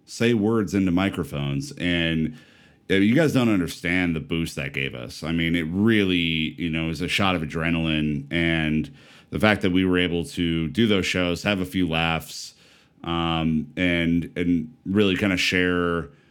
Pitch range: 80-95 Hz